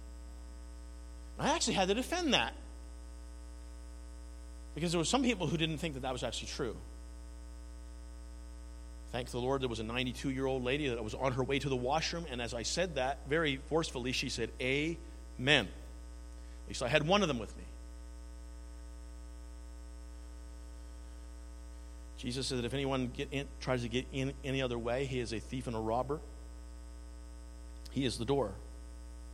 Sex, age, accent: male, 40-59, American